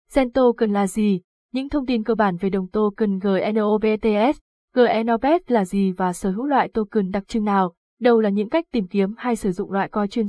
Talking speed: 210 wpm